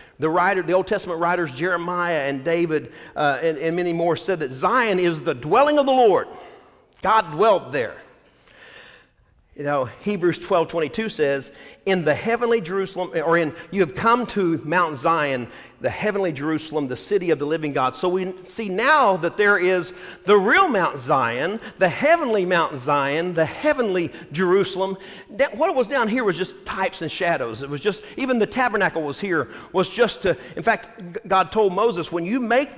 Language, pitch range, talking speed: English, 170-230 Hz, 185 wpm